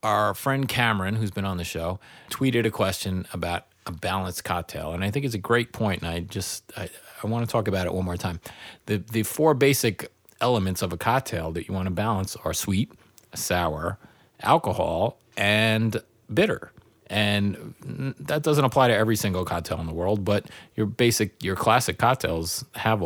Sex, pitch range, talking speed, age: male, 90-110 Hz, 185 wpm, 30-49